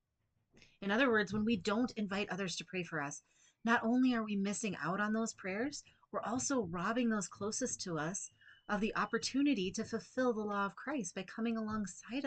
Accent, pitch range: American, 180-240 Hz